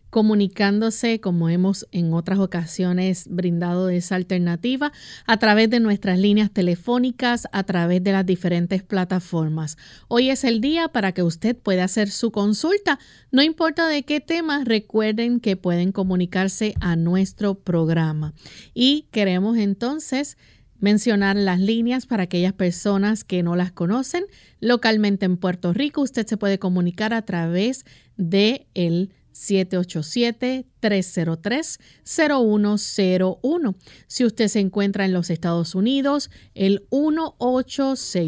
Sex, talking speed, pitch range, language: female, 125 wpm, 185-240 Hz, Spanish